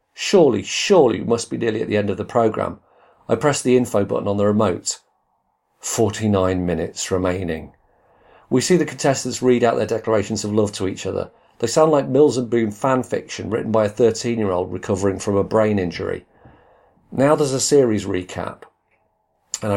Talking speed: 180 wpm